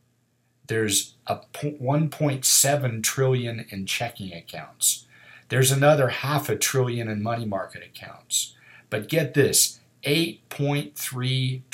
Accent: American